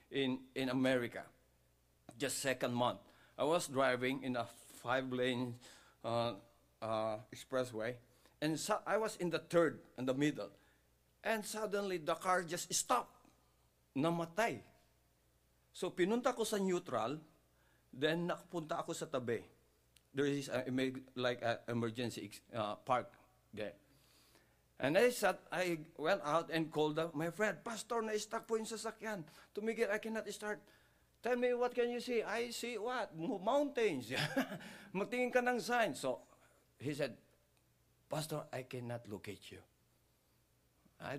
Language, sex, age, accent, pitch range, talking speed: English, male, 50-69, Filipino, 125-195 Hz, 130 wpm